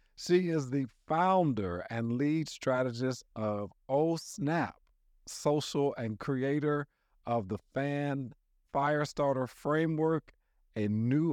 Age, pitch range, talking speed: 50-69, 100-135 Hz, 105 wpm